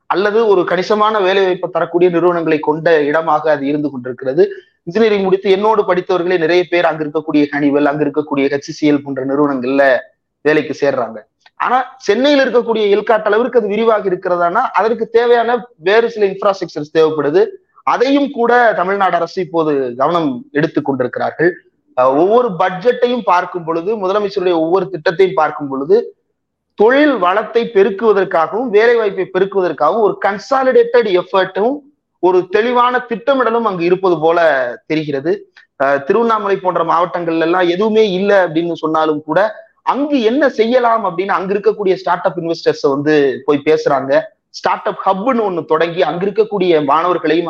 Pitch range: 160-230 Hz